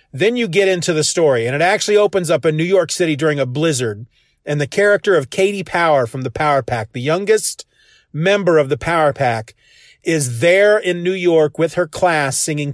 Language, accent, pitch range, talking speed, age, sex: English, American, 135-185 Hz, 205 wpm, 40-59, male